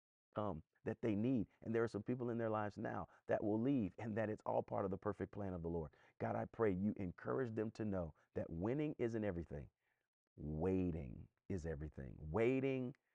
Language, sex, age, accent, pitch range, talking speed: English, male, 40-59, American, 85-110 Hz, 200 wpm